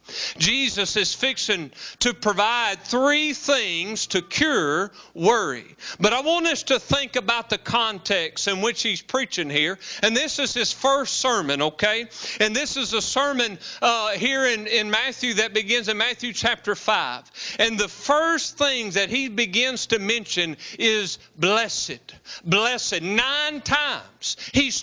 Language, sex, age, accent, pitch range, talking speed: English, male, 40-59, American, 210-270 Hz, 150 wpm